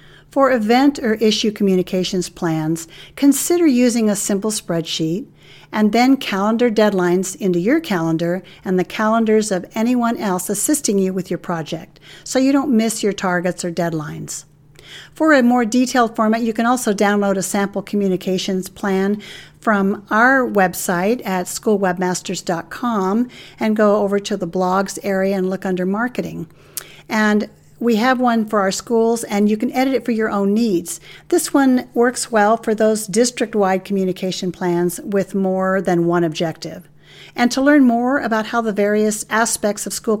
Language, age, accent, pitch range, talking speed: English, 50-69, American, 185-230 Hz, 160 wpm